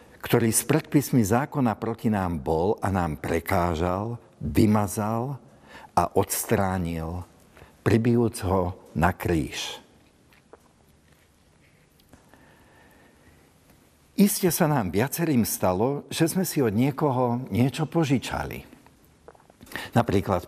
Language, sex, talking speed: Slovak, male, 90 wpm